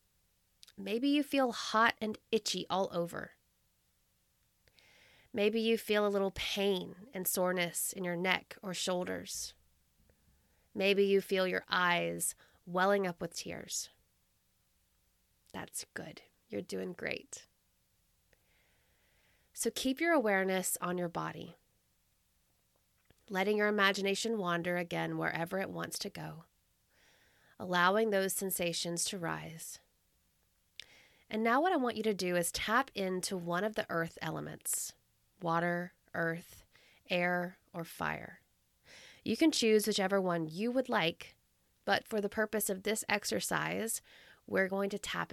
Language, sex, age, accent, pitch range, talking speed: English, female, 20-39, American, 170-215 Hz, 130 wpm